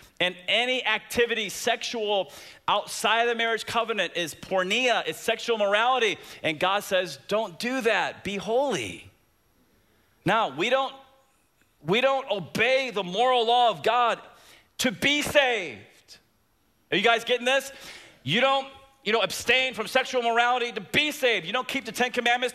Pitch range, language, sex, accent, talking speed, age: 235-325 Hz, English, male, American, 155 wpm, 30-49